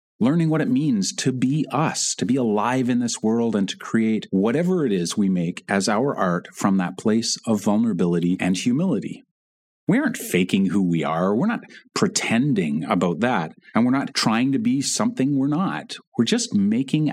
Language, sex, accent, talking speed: English, male, American, 190 wpm